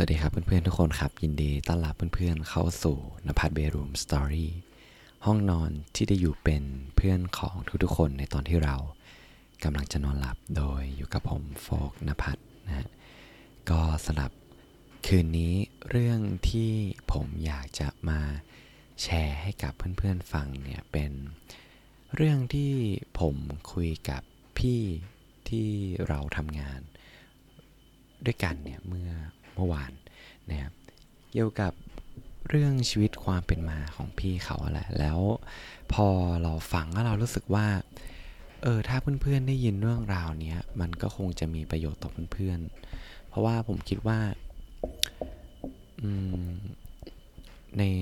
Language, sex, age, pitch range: Thai, male, 20-39, 75-100 Hz